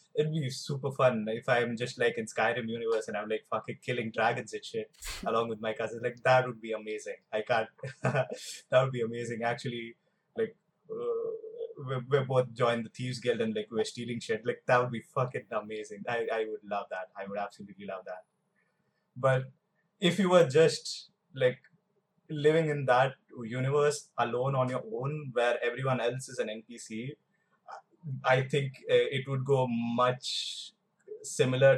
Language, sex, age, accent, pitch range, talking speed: Hindi, male, 20-39, native, 125-175 Hz, 180 wpm